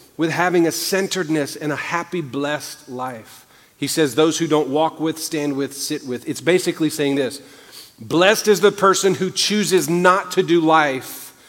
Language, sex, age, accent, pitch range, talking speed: English, male, 40-59, American, 140-175 Hz, 180 wpm